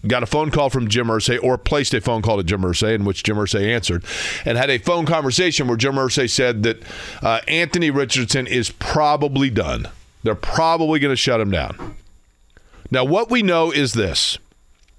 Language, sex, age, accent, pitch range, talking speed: English, male, 40-59, American, 105-135 Hz, 195 wpm